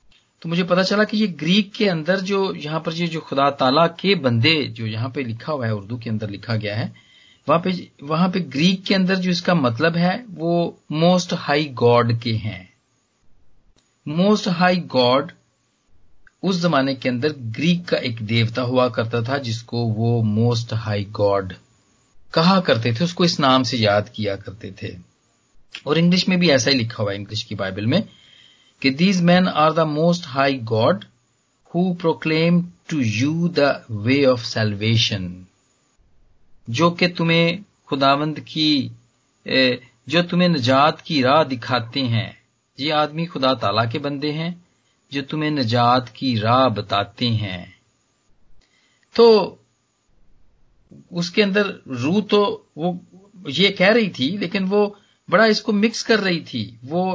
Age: 40-59